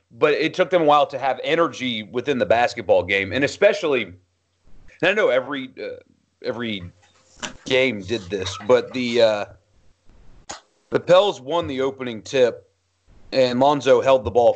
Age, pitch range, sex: 40-59, 105-165 Hz, male